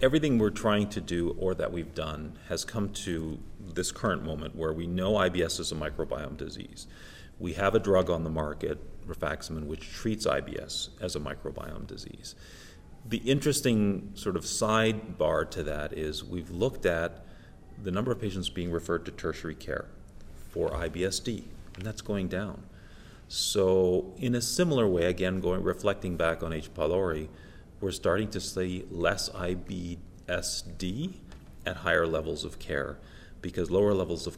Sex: male